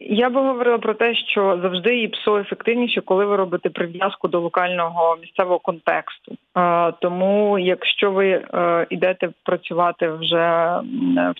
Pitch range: 175-210 Hz